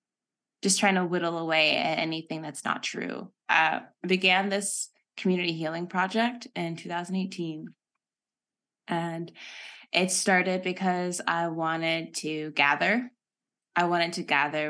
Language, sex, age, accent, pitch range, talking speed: English, female, 20-39, American, 155-185 Hz, 125 wpm